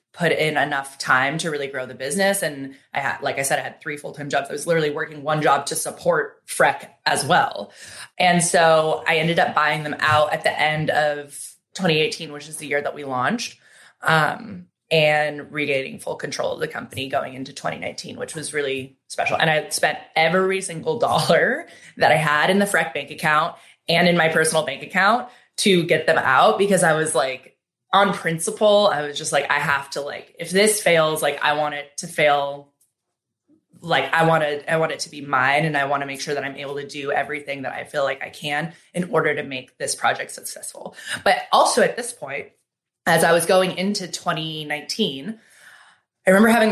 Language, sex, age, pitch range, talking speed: English, female, 20-39, 145-175 Hz, 205 wpm